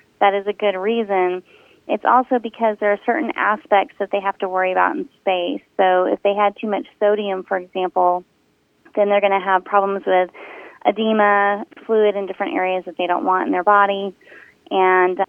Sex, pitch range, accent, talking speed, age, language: female, 195-230 Hz, American, 190 wpm, 30-49, English